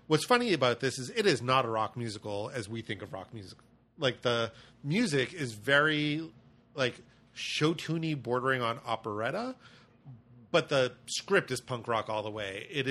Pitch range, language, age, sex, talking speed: 115-135 Hz, English, 30-49, male, 170 wpm